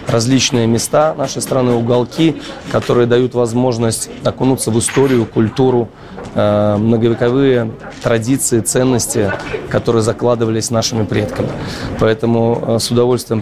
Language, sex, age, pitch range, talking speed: Russian, male, 20-39, 110-130 Hz, 100 wpm